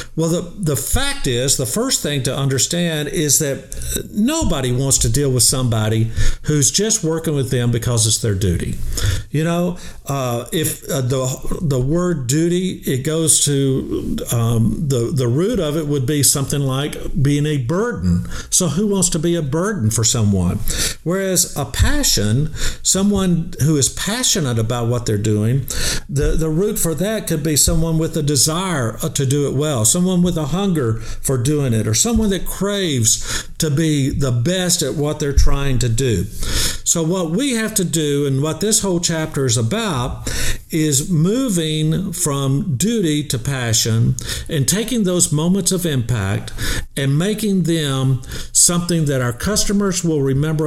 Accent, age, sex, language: American, 50-69, male, English